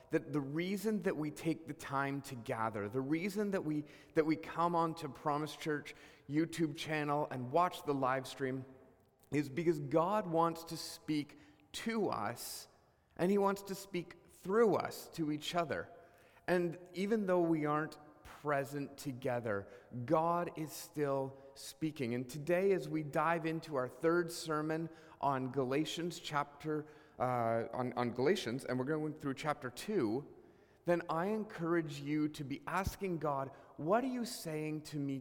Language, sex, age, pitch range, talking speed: English, male, 30-49, 130-165 Hz, 155 wpm